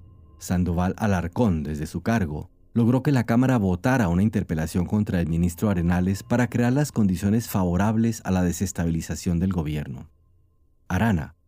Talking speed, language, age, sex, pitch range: 140 wpm, Spanish, 40-59, male, 90-120 Hz